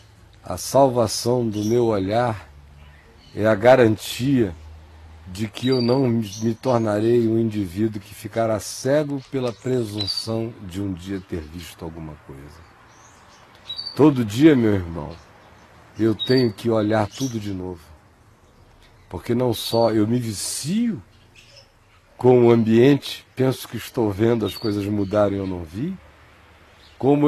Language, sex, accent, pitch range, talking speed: Portuguese, male, Brazilian, 105-135 Hz, 130 wpm